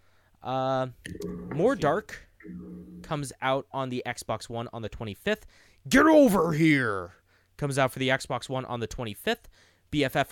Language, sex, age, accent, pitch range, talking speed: English, male, 20-39, American, 110-185 Hz, 145 wpm